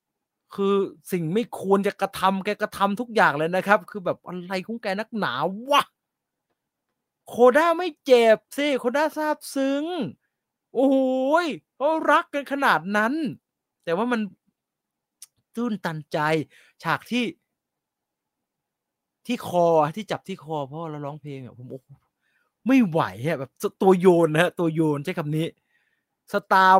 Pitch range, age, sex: 170-230 Hz, 30-49, male